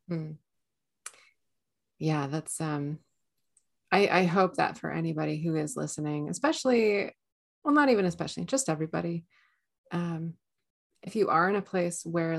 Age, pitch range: 30-49, 155-190 Hz